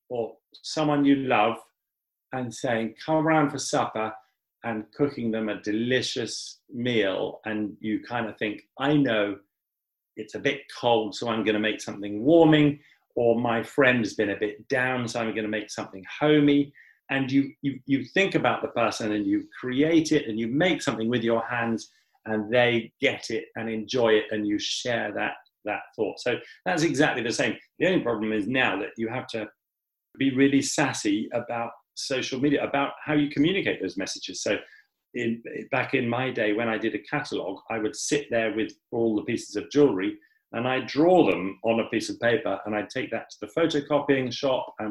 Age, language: 40-59, English